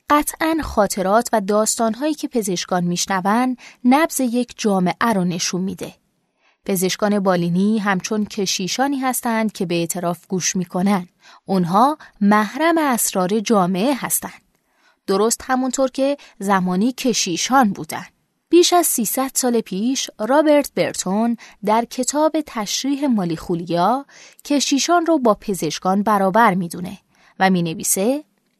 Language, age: Persian, 20-39